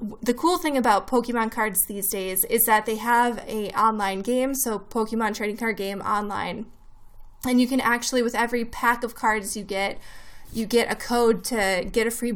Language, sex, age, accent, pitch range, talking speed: English, female, 10-29, American, 215-245 Hz, 195 wpm